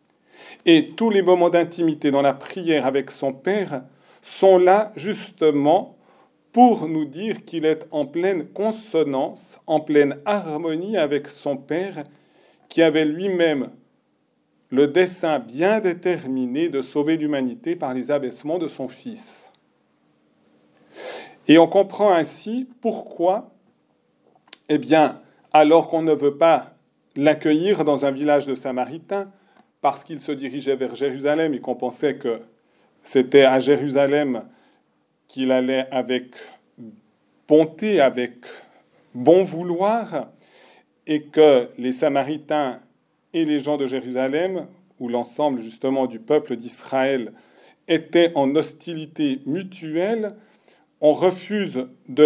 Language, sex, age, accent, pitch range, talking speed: French, male, 40-59, French, 140-185 Hz, 120 wpm